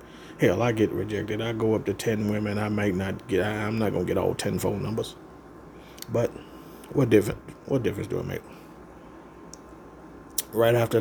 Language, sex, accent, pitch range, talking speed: English, male, American, 100-115 Hz, 175 wpm